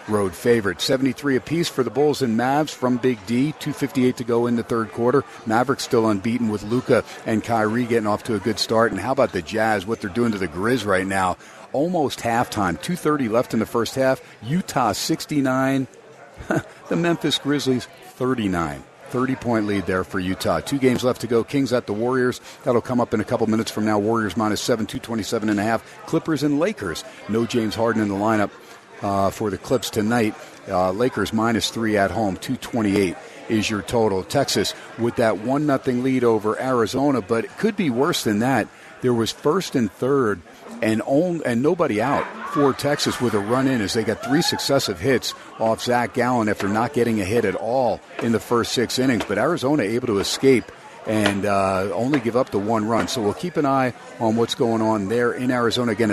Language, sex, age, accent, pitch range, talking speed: English, male, 50-69, American, 110-130 Hz, 205 wpm